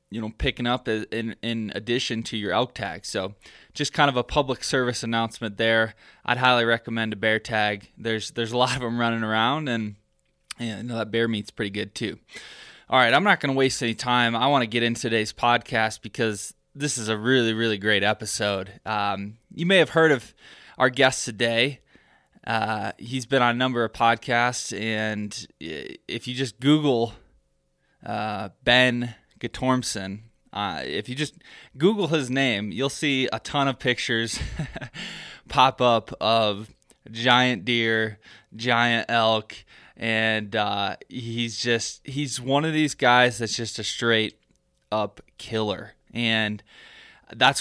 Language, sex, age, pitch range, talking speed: English, male, 20-39, 110-130 Hz, 160 wpm